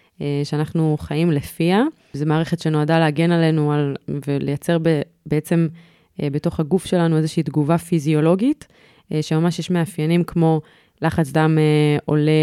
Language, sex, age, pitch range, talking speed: Hebrew, female, 20-39, 150-170 Hz, 120 wpm